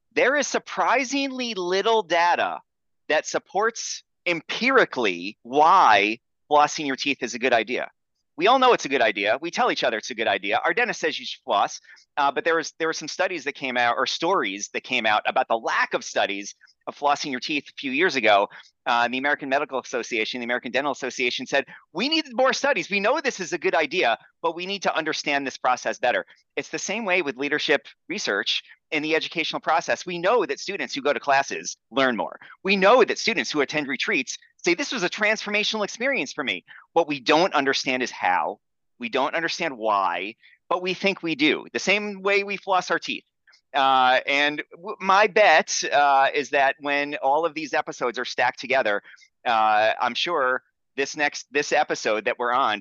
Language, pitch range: English, 140-195 Hz